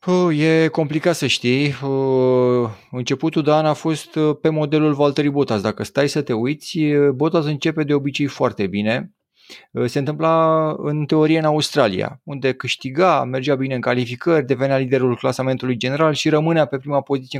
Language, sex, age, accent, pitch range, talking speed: Romanian, male, 30-49, native, 125-155 Hz, 150 wpm